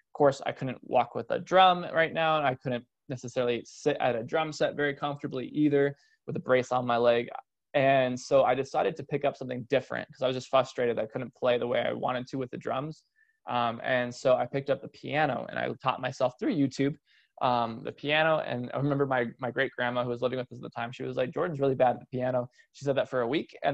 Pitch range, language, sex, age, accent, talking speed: 125-140 Hz, English, male, 20-39, American, 255 wpm